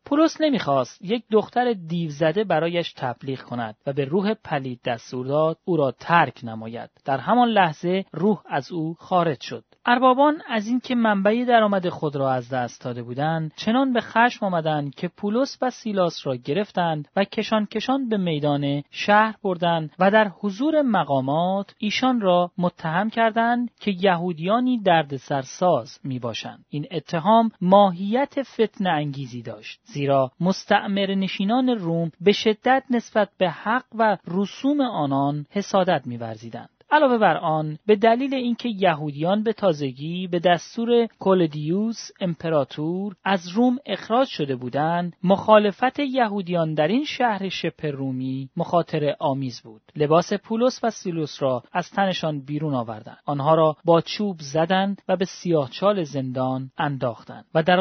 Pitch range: 150-215 Hz